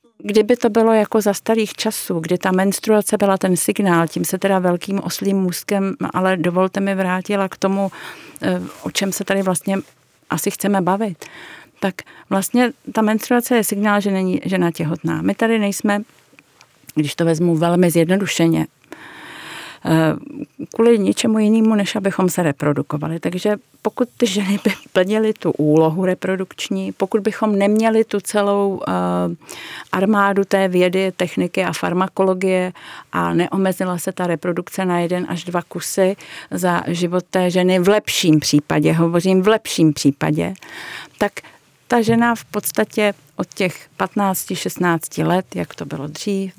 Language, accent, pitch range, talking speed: Czech, native, 170-205 Hz, 145 wpm